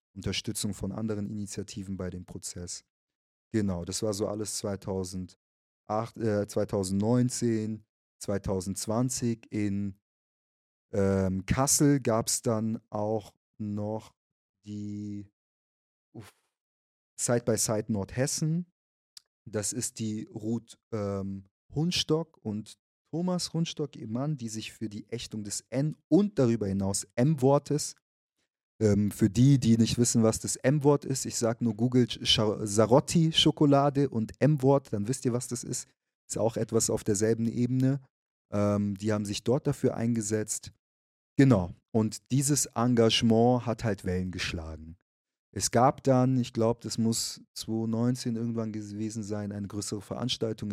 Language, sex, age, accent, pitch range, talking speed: German, male, 30-49, German, 100-120 Hz, 125 wpm